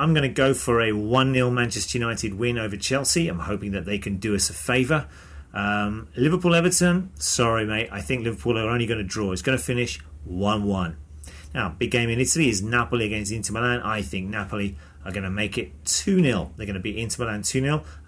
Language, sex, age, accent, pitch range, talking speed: English, male, 30-49, British, 95-125 Hz, 210 wpm